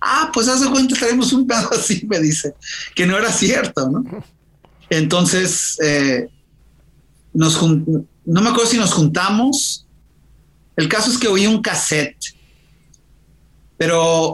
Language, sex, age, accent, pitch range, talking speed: English, male, 40-59, Mexican, 150-185 Hz, 140 wpm